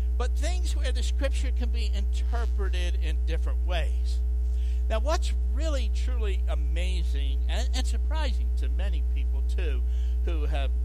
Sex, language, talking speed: male, English, 140 wpm